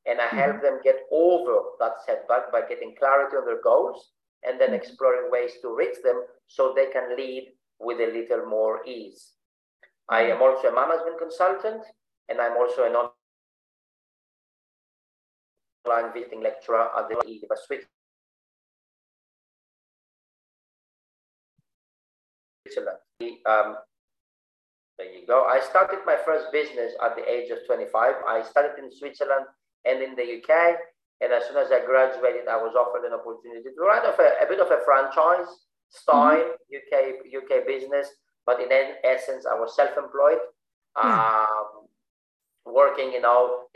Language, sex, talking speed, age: English, male, 140 wpm, 40-59